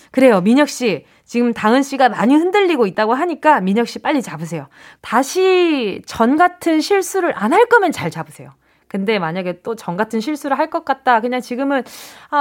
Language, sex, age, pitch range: Korean, female, 20-39, 200-305 Hz